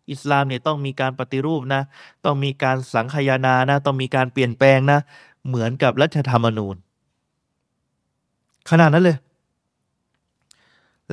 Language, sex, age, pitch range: Thai, male, 20-39, 125-145 Hz